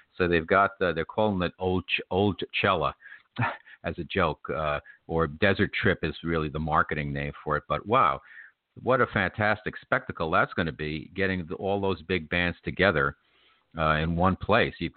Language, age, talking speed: English, 50-69, 180 wpm